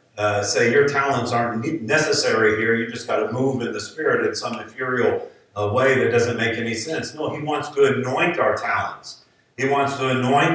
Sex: male